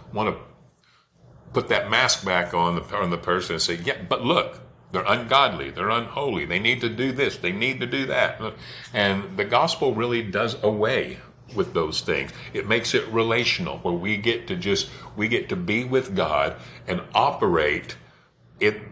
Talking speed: 180 wpm